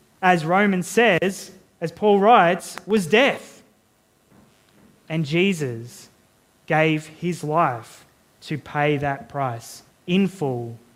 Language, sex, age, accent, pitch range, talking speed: English, male, 20-39, Australian, 145-185 Hz, 105 wpm